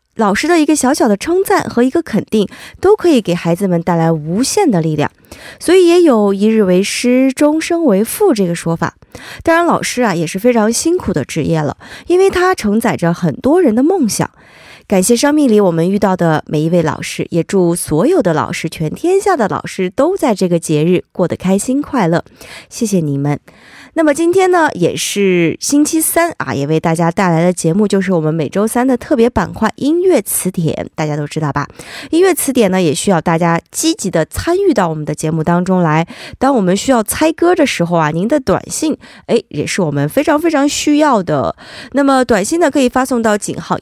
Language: Korean